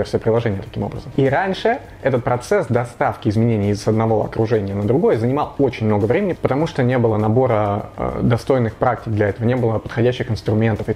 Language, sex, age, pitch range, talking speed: Russian, male, 20-39, 110-125 Hz, 180 wpm